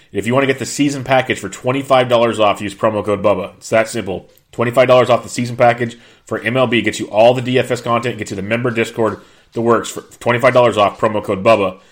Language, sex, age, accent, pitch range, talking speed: English, male, 30-49, American, 105-125 Hz, 220 wpm